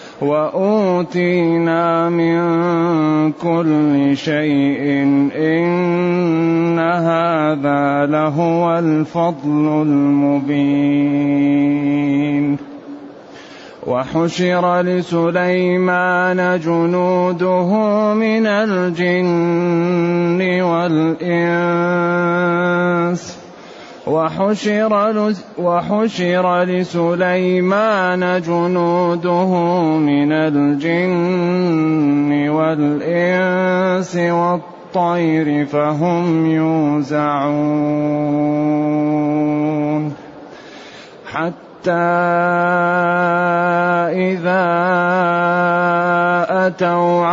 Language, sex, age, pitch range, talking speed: Arabic, male, 30-49, 155-180 Hz, 35 wpm